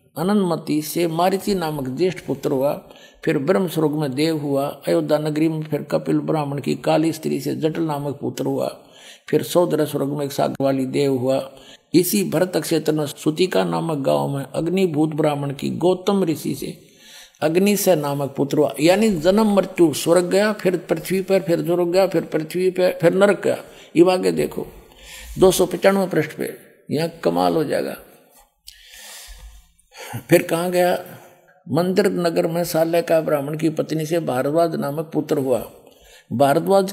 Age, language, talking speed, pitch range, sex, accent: 50-69, Hindi, 160 wpm, 150-185 Hz, male, native